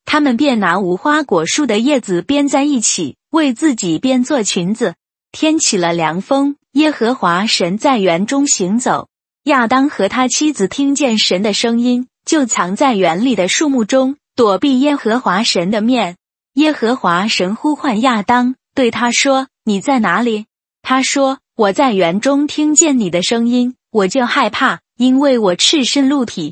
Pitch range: 205-275 Hz